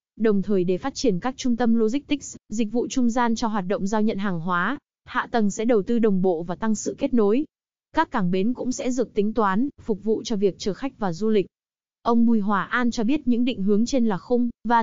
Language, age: Vietnamese, 20-39